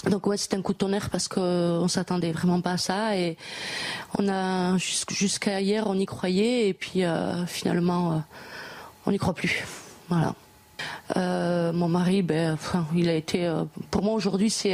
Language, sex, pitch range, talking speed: French, female, 180-220 Hz, 185 wpm